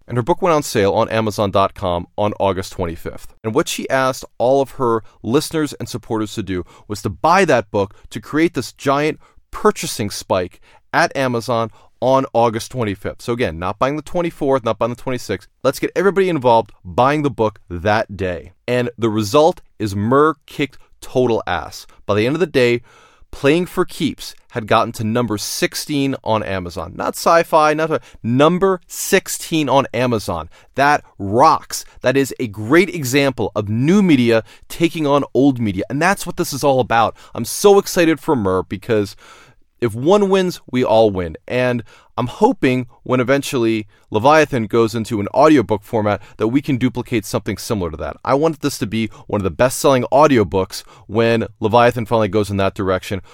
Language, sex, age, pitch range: English, male, 30-49, 105-140 Hz